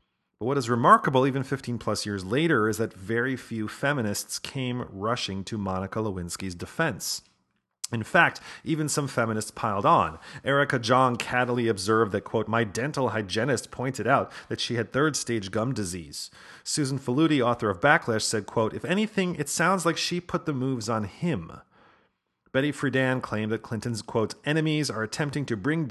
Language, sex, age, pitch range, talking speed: English, male, 40-59, 105-140 Hz, 165 wpm